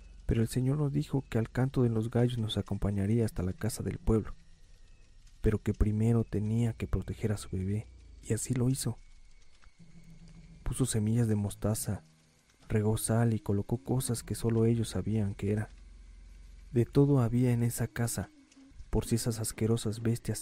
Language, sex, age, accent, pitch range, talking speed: Spanish, male, 40-59, Mexican, 100-125 Hz, 170 wpm